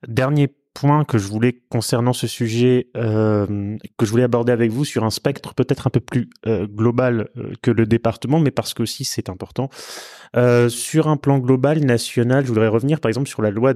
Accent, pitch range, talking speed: French, 115-145 Hz, 205 wpm